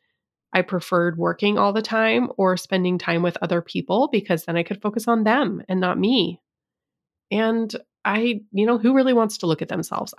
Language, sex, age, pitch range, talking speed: English, female, 20-39, 180-240 Hz, 195 wpm